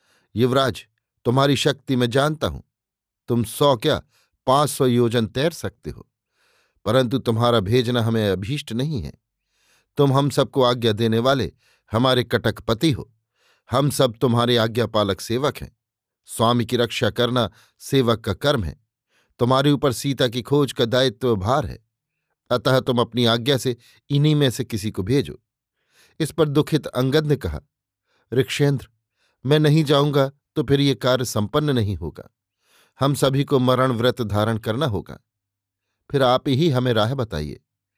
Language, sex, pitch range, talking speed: Hindi, male, 115-140 Hz, 155 wpm